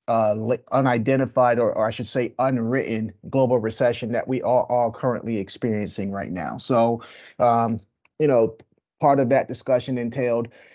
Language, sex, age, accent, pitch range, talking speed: English, male, 30-49, American, 115-130 Hz, 150 wpm